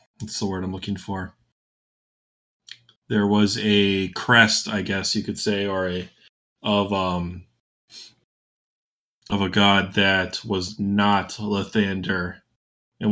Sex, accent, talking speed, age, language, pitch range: male, American, 120 wpm, 20-39, English, 95-110 Hz